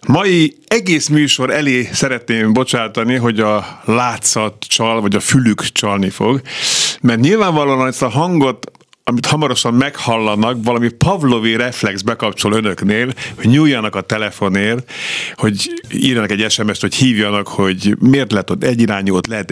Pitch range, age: 105-140 Hz, 50-69